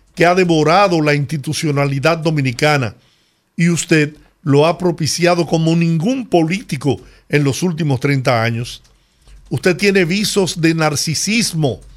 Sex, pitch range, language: male, 140-175 Hz, Spanish